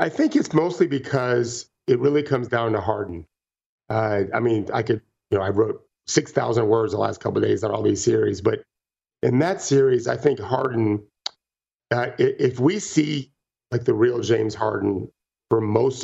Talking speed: 185 wpm